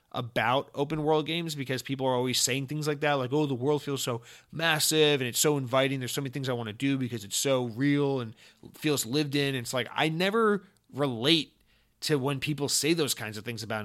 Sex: male